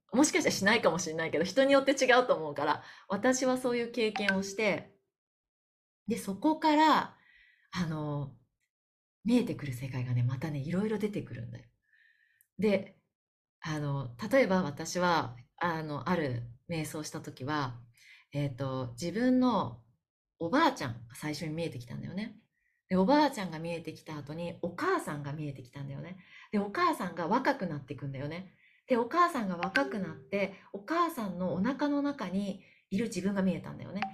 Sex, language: female, Japanese